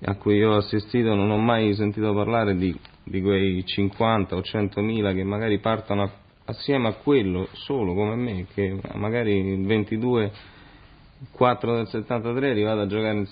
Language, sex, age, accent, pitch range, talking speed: Italian, male, 30-49, native, 100-115 Hz, 160 wpm